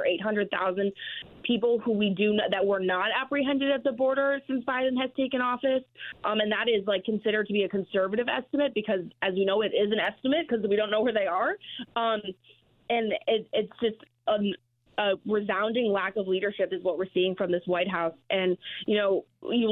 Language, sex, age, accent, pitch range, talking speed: English, female, 20-39, American, 190-220 Hz, 205 wpm